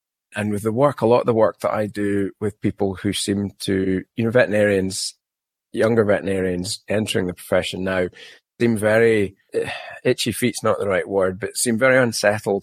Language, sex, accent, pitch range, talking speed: English, male, British, 100-130 Hz, 185 wpm